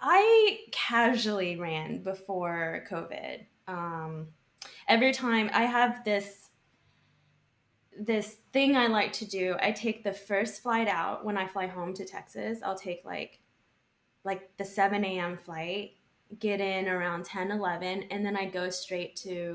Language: English